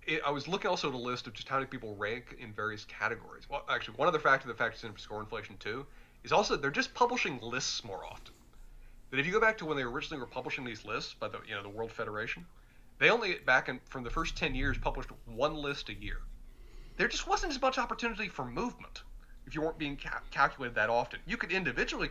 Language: English